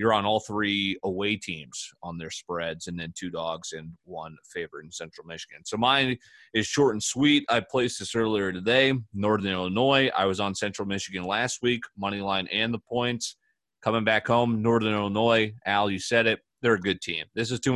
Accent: American